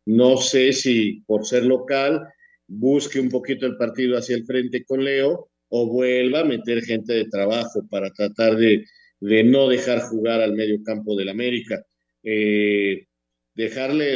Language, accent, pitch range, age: Spanish, Mexican, 105-130 Hz, 50-69